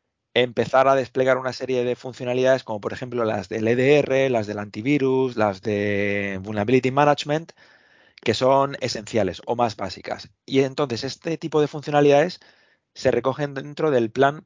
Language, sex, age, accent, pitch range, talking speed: Spanish, male, 20-39, Spanish, 110-145 Hz, 155 wpm